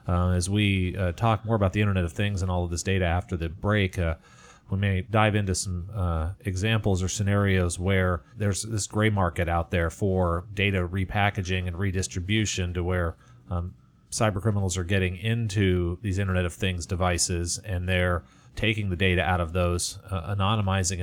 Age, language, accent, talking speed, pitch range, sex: 30-49, English, American, 185 wpm, 90-105 Hz, male